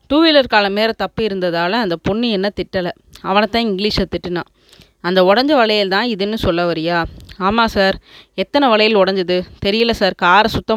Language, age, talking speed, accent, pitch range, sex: Tamil, 20-39, 155 wpm, native, 180-225 Hz, female